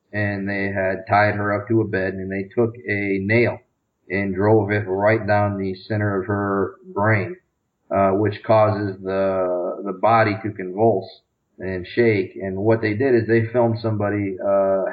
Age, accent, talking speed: 40-59, American, 175 wpm